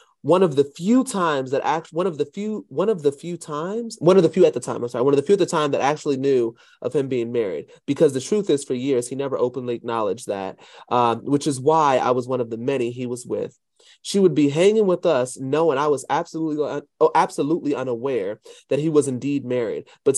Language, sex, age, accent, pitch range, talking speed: English, male, 30-49, American, 120-175 Hz, 240 wpm